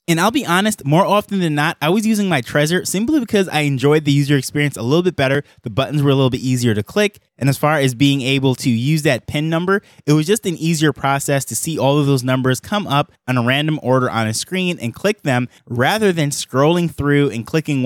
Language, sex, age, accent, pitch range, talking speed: English, male, 20-39, American, 135-175 Hz, 250 wpm